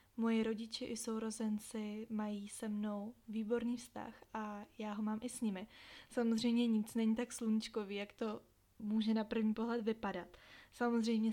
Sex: female